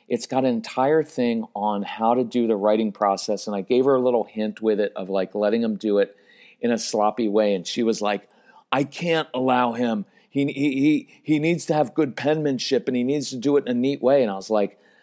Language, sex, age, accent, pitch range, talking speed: English, male, 40-59, American, 115-140 Hz, 245 wpm